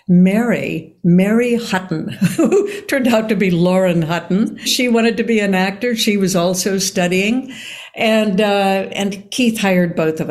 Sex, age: female, 60-79